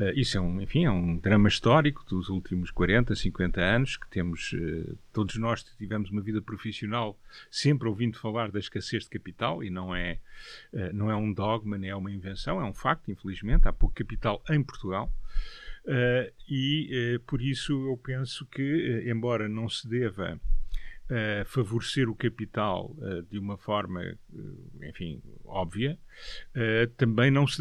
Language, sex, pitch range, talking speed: Portuguese, male, 100-130 Hz, 150 wpm